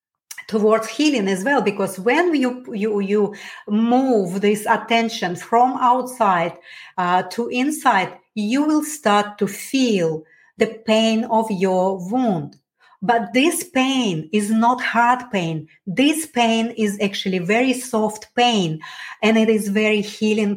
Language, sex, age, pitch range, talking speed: English, female, 30-49, 195-245 Hz, 135 wpm